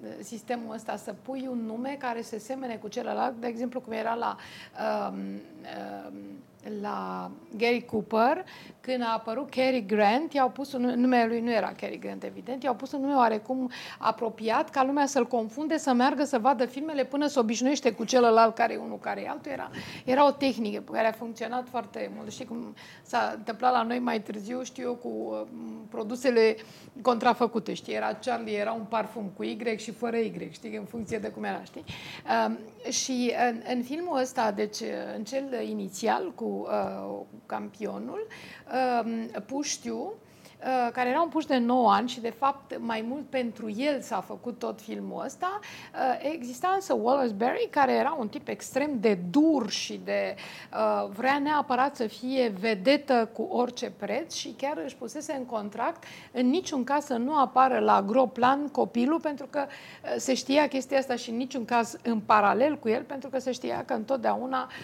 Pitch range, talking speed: 225-265 Hz, 175 wpm